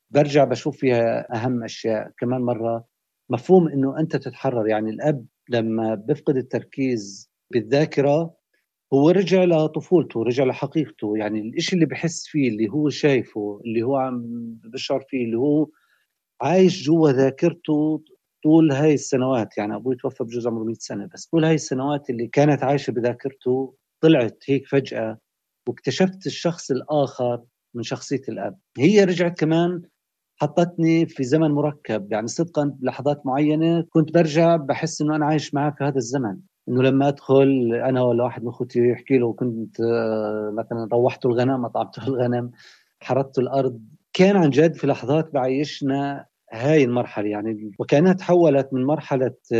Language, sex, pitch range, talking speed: Arabic, male, 120-150 Hz, 145 wpm